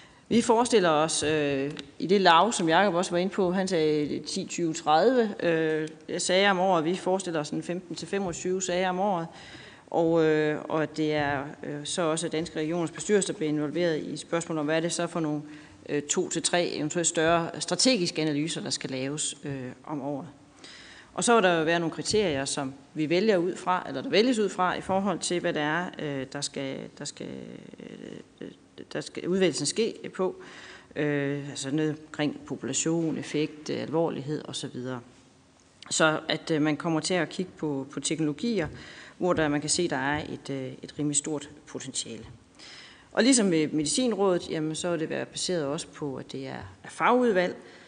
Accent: native